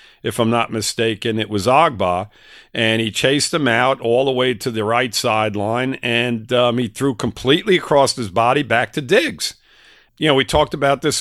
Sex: male